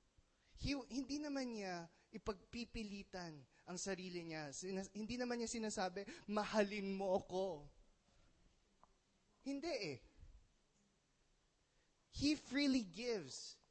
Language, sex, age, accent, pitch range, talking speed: English, male, 20-39, Filipino, 170-235 Hz, 90 wpm